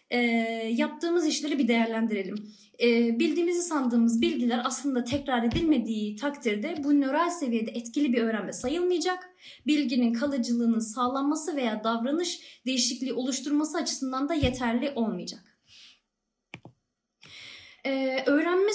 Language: Turkish